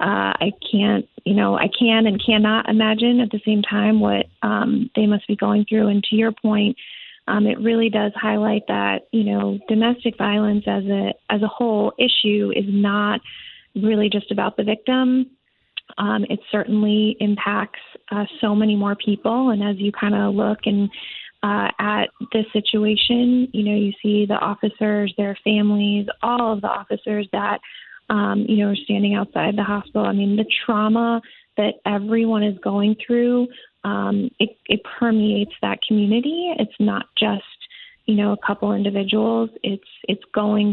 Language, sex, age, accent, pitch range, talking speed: English, female, 30-49, American, 205-225 Hz, 165 wpm